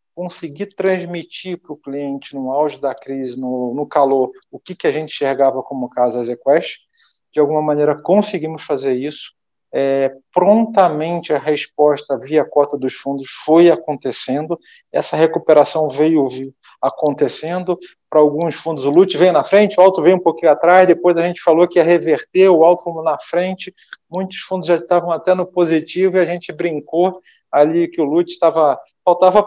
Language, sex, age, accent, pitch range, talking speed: Portuguese, male, 40-59, Brazilian, 150-180 Hz, 170 wpm